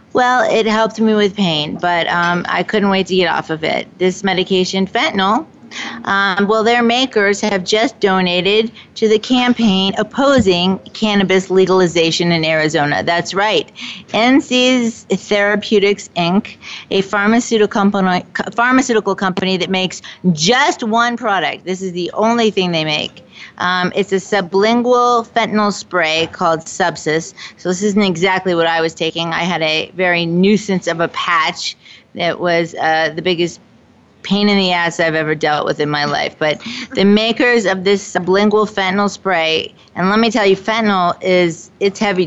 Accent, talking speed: American, 160 wpm